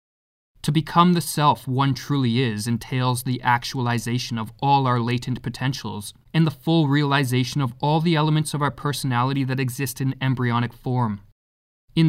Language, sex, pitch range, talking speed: English, male, 120-145 Hz, 155 wpm